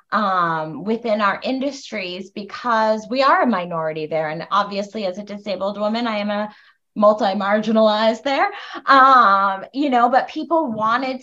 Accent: American